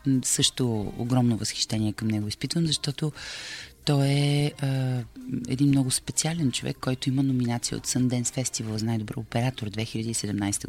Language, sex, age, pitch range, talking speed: Bulgarian, female, 30-49, 115-145 Hz, 130 wpm